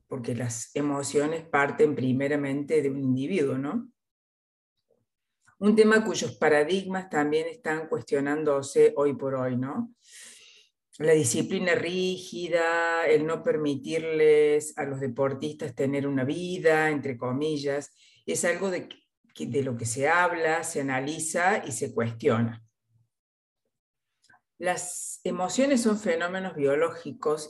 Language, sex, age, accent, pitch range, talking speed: Spanish, female, 50-69, Argentinian, 140-195 Hz, 115 wpm